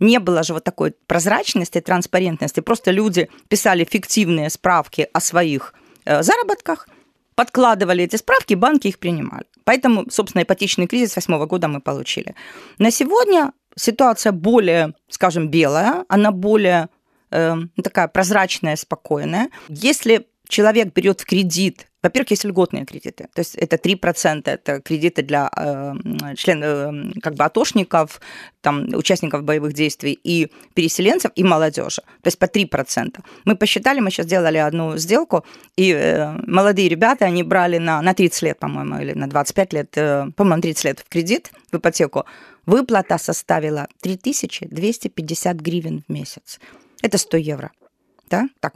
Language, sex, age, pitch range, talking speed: Ukrainian, female, 30-49, 165-220 Hz, 140 wpm